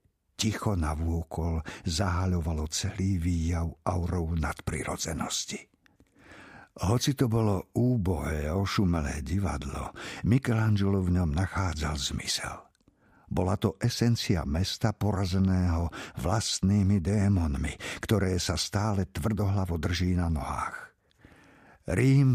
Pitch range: 85-110 Hz